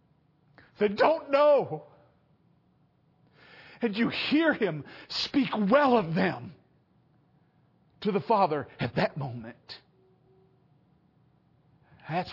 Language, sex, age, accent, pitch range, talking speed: English, male, 50-69, American, 135-225 Hz, 90 wpm